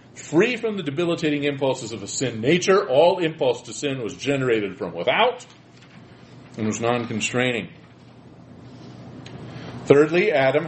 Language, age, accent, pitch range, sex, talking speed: English, 40-59, American, 110-150 Hz, male, 130 wpm